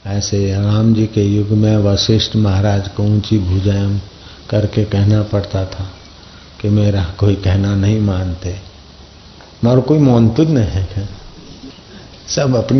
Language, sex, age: Hindi, male, 50-69